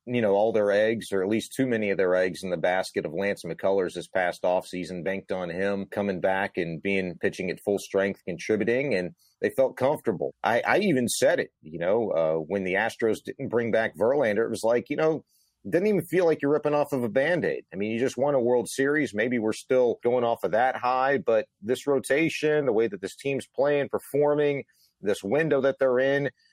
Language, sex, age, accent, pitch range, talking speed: English, male, 40-59, American, 100-135 Hz, 225 wpm